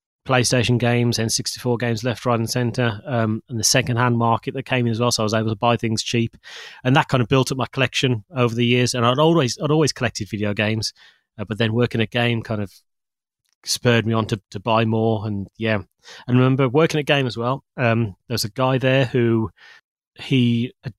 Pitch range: 110-130 Hz